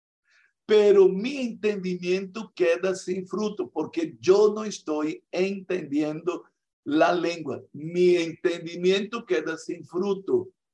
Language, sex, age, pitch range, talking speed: Spanish, male, 60-79, 150-210 Hz, 100 wpm